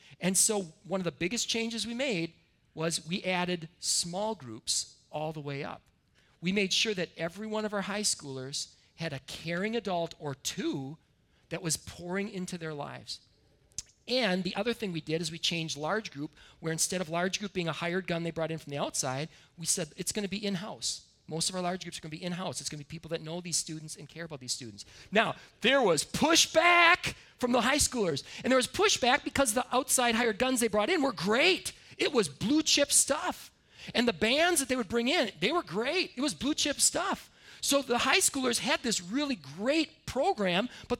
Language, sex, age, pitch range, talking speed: English, male, 40-59, 160-245 Hz, 215 wpm